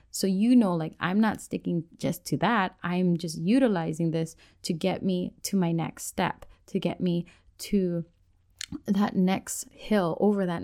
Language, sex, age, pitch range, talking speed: English, female, 20-39, 165-220 Hz, 170 wpm